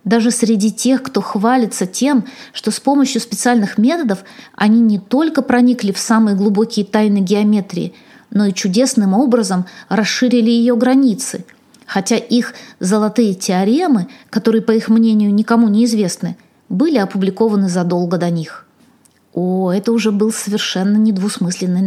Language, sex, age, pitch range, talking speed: Russian, female, 20-39, 205-250 Hz, 135 wpm